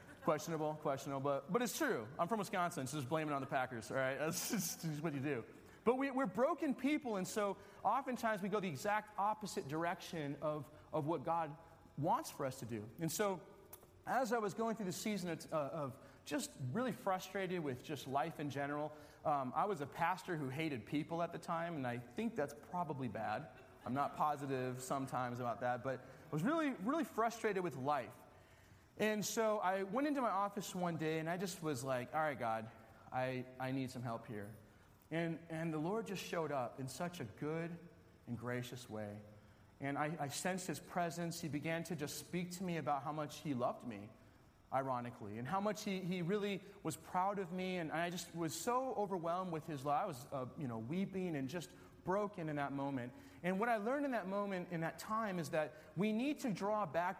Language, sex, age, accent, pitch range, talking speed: English, male, 30-49, American, 135-195 Hz, 210 wpm